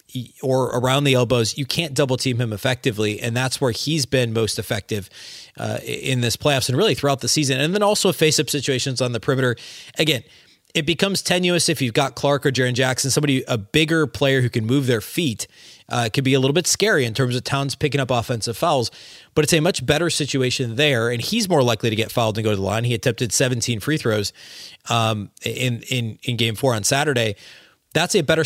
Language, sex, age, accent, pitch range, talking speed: English, male, 30-49, American, 115-145 Hz, 220 wpm